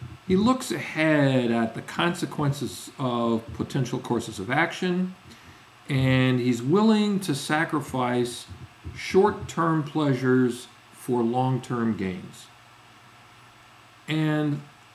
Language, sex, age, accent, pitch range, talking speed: English, male, 50-69, American, 120-150 Hz, 90 wpm